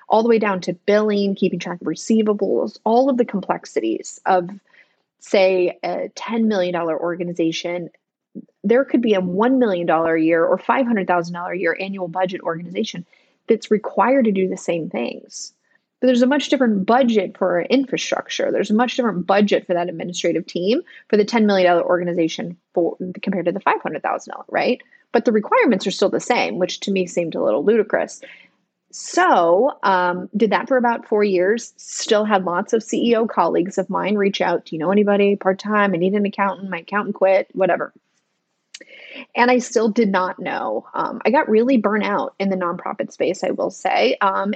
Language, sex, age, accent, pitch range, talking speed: English, female, 20-39, American, 185-235 Hz, 180 wpm